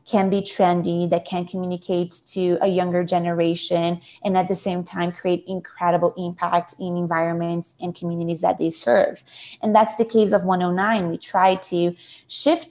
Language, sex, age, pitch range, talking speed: English, female, 20-39, 175-225 Hz, 165 wpm